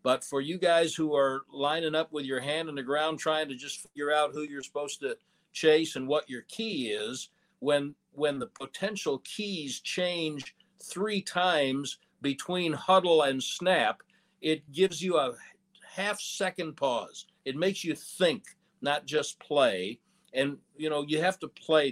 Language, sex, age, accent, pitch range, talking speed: English, male, 60-79, American, 140-185 Hz, 165 wpm